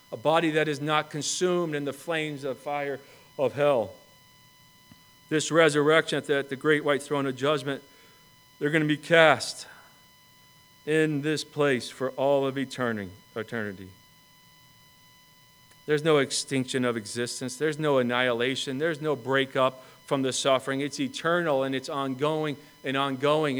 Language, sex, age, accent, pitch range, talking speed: English, male, 40-59, American, 140-160 Hz, 140 wpm